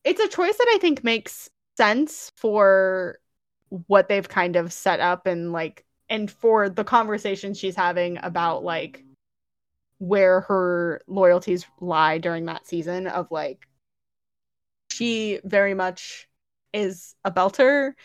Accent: American